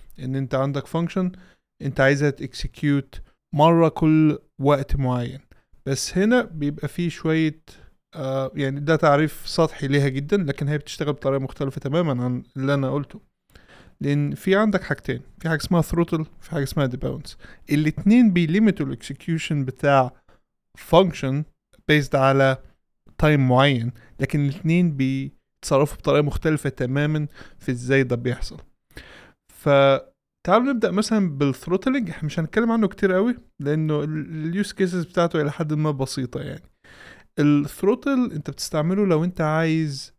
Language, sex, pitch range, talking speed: Arabic, male, 140-170 Hz, 140 wpm